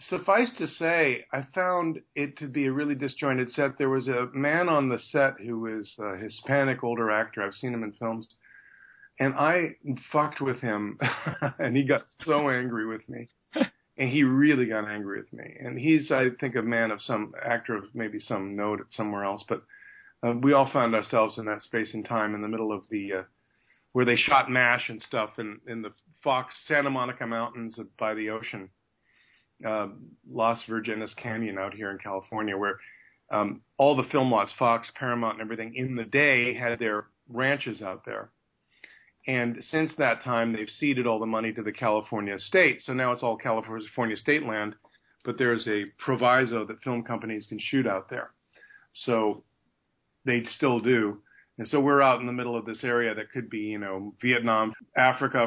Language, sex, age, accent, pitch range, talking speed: English, male, 50-69, American, 110-135 Hz, 190 wpm